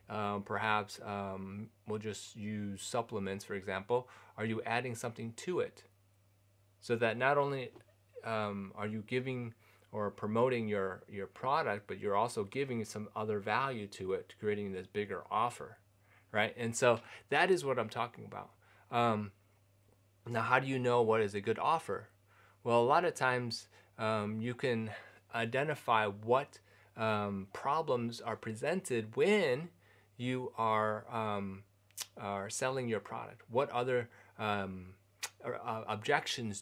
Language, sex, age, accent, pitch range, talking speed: English, male, 30-49, American, 100-120 Hz, 145 wpm